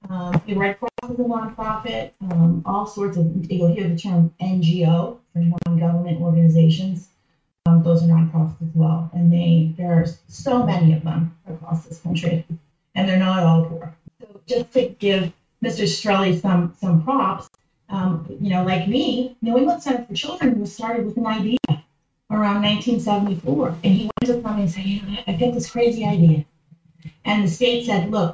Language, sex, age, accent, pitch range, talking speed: English, female, 30-49, American, 170-205 Hz, 180 wpm